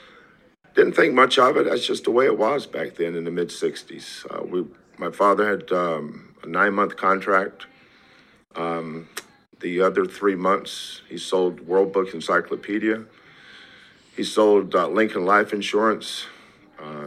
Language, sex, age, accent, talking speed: English, male, 50-69, American, 150 wpm